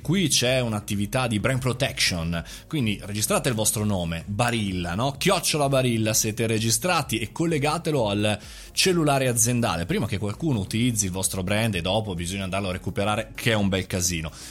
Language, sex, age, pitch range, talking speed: Italian, male, 20-39, 105-145 Hz, 165 wpm